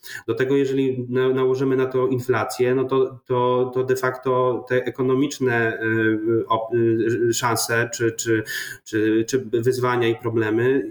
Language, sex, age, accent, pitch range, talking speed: Polish, male, 30-49, native, 120-130 Hz, 125 wpm